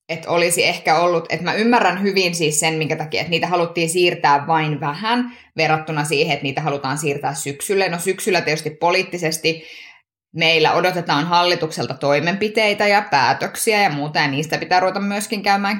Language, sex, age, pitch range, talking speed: Finnish, female, 20-39, 150-180 Hz, 165 wpm